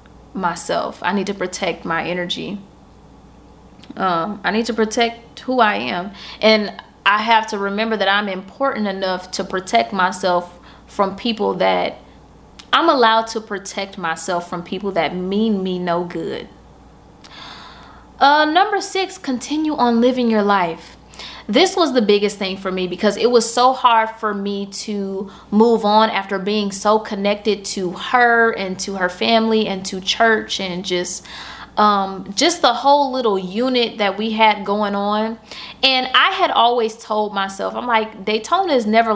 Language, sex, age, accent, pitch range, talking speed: English, female, 20-39, American, 195-230 Hz, 160 wpm